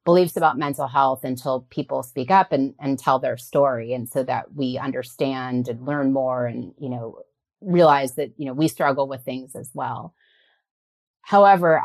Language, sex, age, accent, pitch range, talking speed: English, female, 30-49, American, 135-175 Hz, 175 wpm